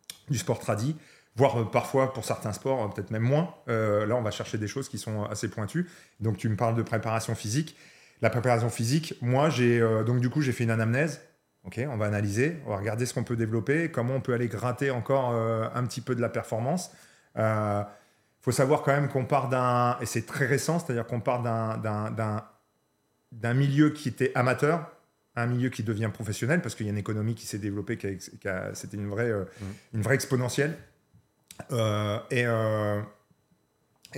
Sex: male